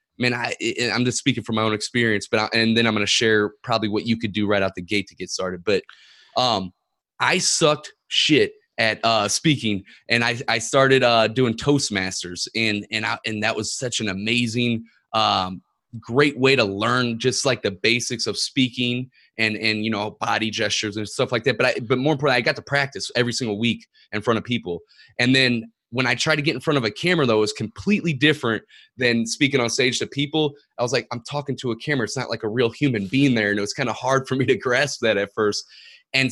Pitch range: 110-135 Hz